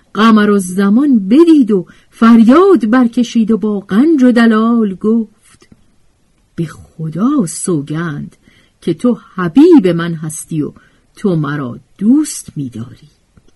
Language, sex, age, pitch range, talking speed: Persian, female, 50-69, 150-220 Hz, 115 wpm